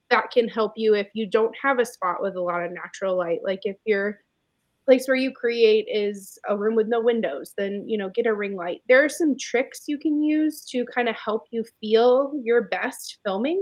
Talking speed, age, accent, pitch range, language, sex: 230 wpm, 20-39, American, 205-260 Hz, English, female